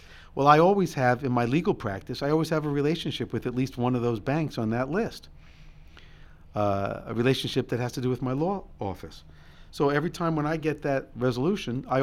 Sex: male